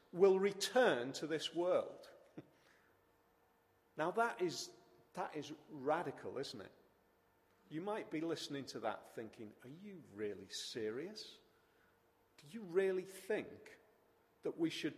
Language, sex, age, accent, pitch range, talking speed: English, male, 40-59, British, 140-220 Hz, 125 wpm